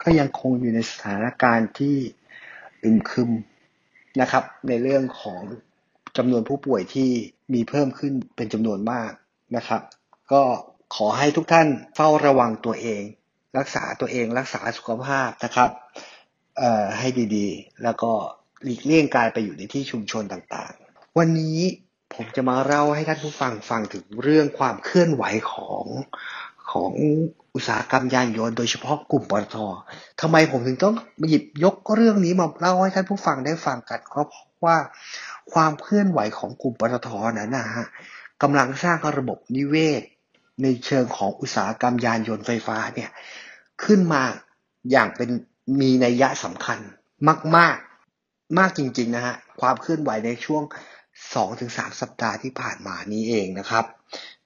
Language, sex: English, male